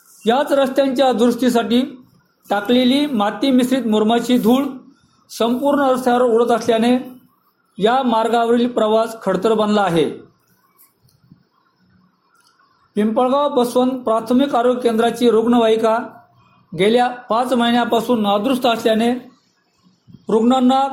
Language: Marathi